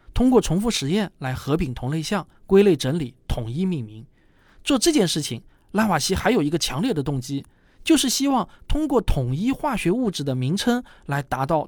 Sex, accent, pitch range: male, native, 135-215 Hz